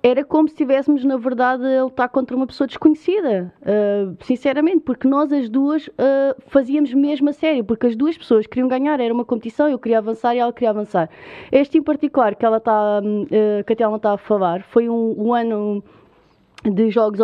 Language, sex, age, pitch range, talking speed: Portuguese, female, 20-39, 220-275 Hz, 180 wpm